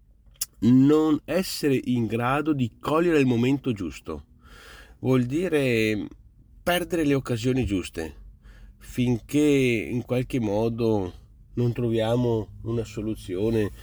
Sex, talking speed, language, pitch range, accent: male, 100 wpm, Italian, 100-120 Hz, native